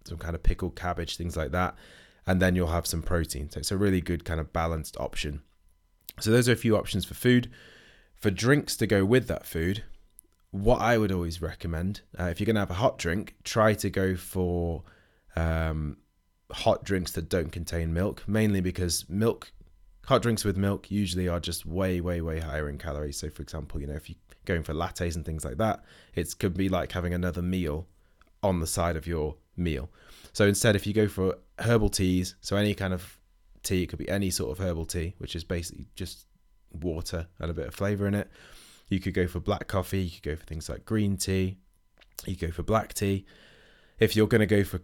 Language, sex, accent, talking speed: English, male, British, 220 wpm